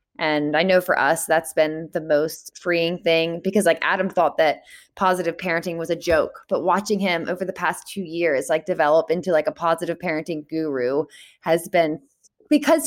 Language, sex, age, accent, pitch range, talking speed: English, female, 20-39, American, 165-210 Hz, 185 wpm